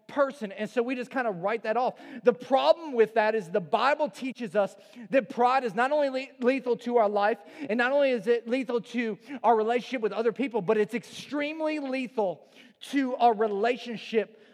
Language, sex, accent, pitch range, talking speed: English, male, American, 205-245 Hz, 195 wpm